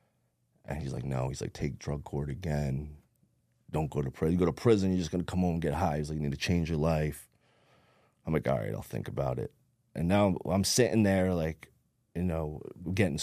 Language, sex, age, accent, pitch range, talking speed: English, male, 30-49, American, 75-95 Hz, 230 wpm